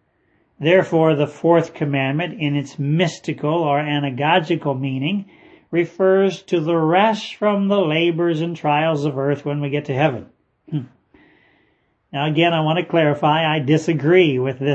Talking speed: 145 wpm